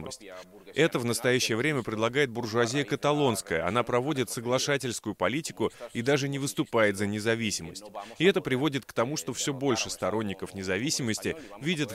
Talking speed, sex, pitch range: 140 wpm, male, 105-135 Hz